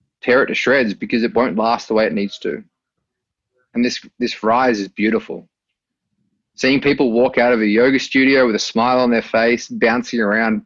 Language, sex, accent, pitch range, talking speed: English, male, Australian, 110-125 Hz, 195 wpm